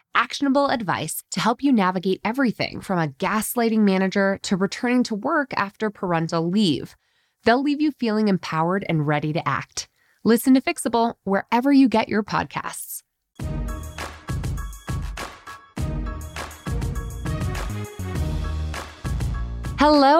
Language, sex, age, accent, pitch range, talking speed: English, female, 20-39, American, 170-245 Hz, 105 wpm